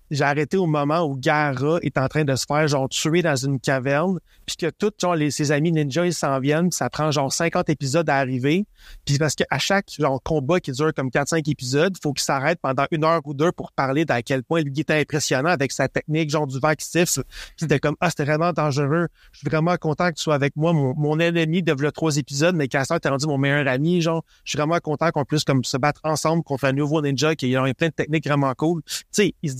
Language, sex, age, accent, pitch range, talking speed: French, male, 30-49, Canadian, 140-170 Hz, 250 wpm